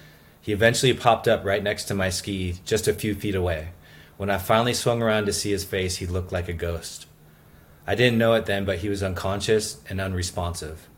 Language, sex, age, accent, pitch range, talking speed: English, male, 30-49, American, 90-105 Hz, 215 wpm